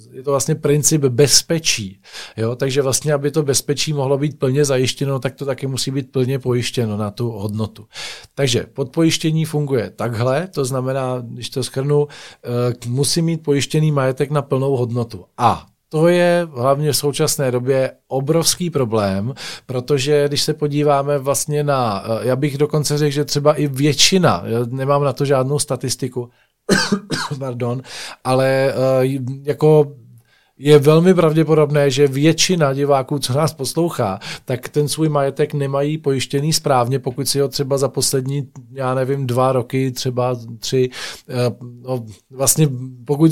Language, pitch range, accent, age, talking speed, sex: Czech, 125-150 Hz, native, 40-59, 140 wpm, male